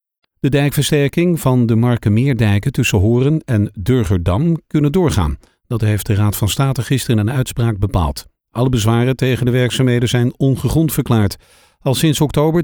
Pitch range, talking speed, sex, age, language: 105-135 Hz, 150 wpm, male, 50-69, Dutch